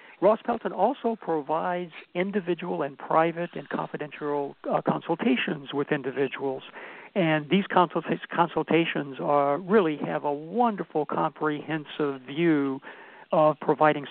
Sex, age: male, 60-79